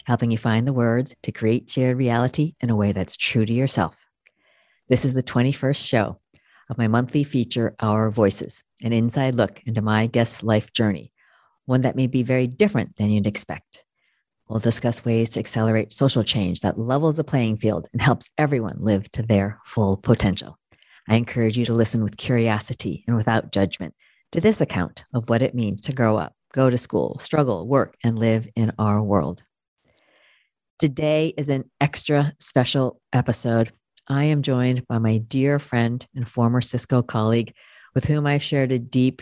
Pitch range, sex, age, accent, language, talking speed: 110-130 Hz, female, 40-59, American, English, 180 wpm